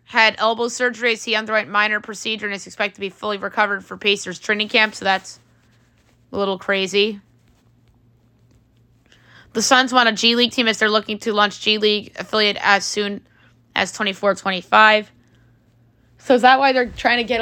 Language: English